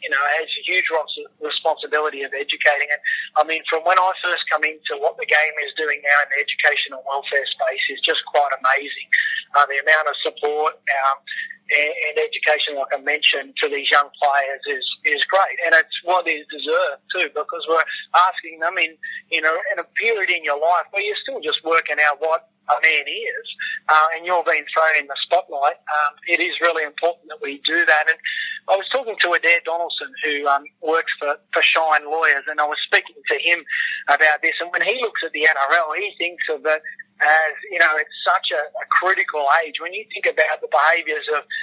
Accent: Australian